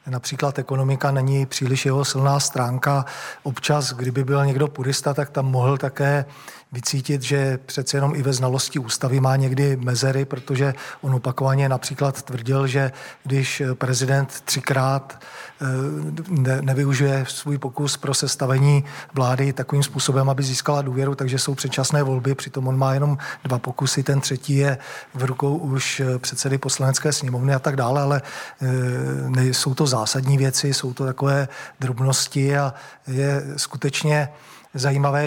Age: 40-59